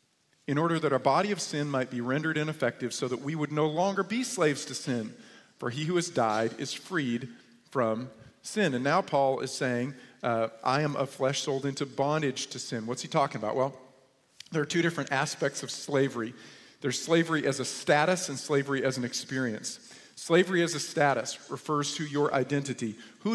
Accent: American